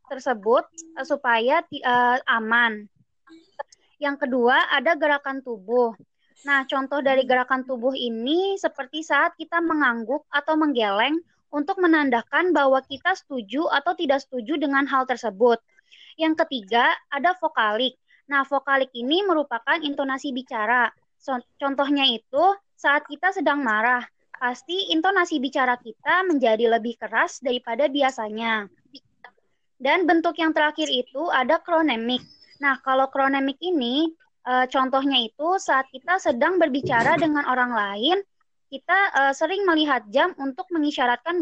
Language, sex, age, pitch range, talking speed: Indonesian, female, 20-39, 250-320 Hz, 120 wpm